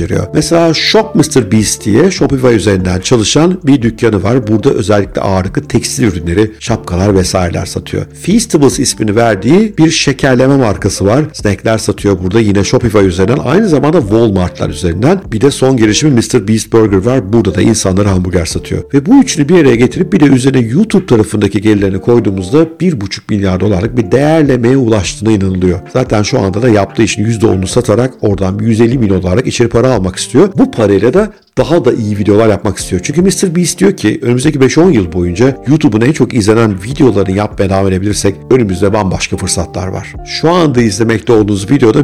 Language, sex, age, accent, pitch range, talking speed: Turkish, male, 50-69, native, 100-130 Hz, 170 wpm